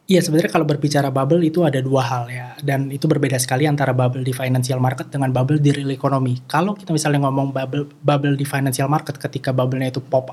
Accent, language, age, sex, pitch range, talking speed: native, Indonesian, 20-39, male, 135-155 Hz, 215 wpm